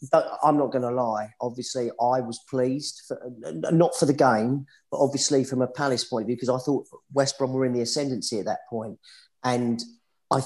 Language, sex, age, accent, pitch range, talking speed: English, male, 40-59, British, 115-135 Hz, 200 wpm